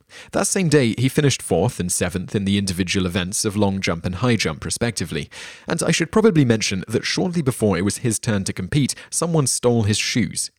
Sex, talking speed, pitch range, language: male, 210 wpm, 90-115 Hz, English